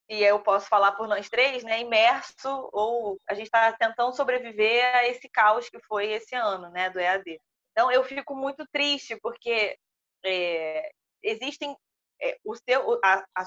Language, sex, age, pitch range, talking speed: Portuguese, female, 20-39, 205-270 Hz, 145 wpm